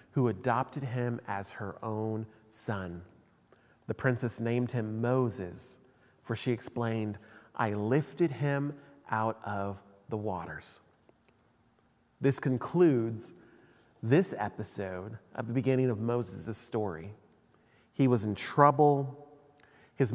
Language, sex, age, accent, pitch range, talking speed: English, male, 30-49, American, 110-140 Hz, 110 wpm